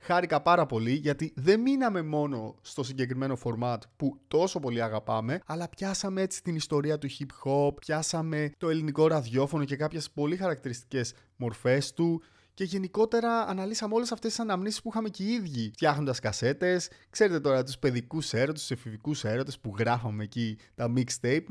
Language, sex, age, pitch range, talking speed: Greek, male, 20-39, 130-175 Hz, 165 wpm